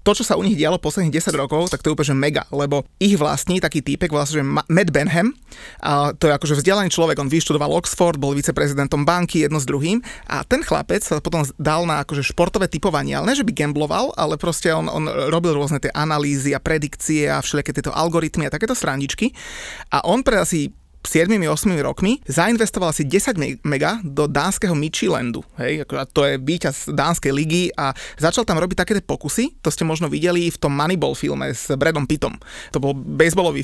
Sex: male